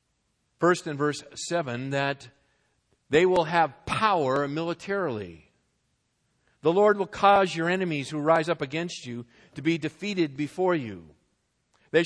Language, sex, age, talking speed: English, male, 50-69, 135 wpm